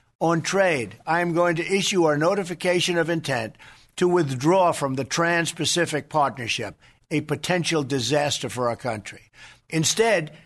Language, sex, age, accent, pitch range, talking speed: English, male, 50-69, American, 140-180 Hz, 140 wpm